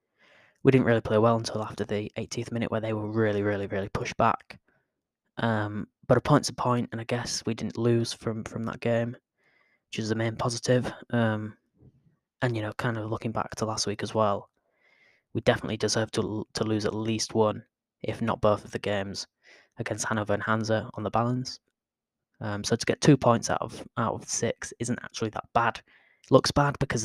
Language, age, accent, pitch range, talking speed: English, 10-29, British, 105-120 Hz, 205 wpm